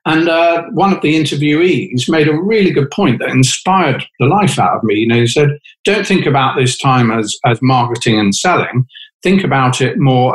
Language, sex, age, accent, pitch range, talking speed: English, male, 50-69, British, 125-160 Hz, 210 wpm